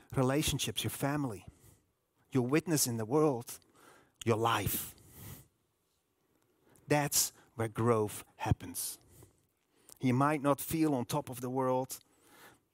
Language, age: English, 30-49